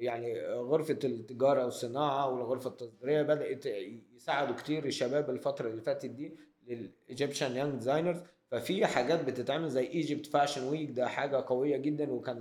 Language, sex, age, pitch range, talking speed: Arabic, male, 20-39, 125-150 Hz, 140 wpm